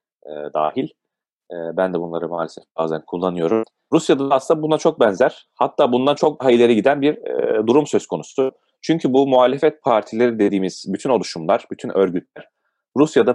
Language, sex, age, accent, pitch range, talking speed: Turkish, male, 30-49, native, 95-140 Hz, 155 wpm